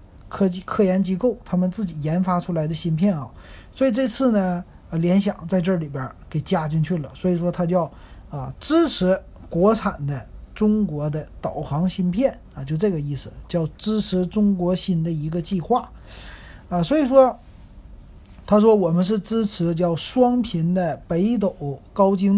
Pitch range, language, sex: 160-205 Hz, Chinese, male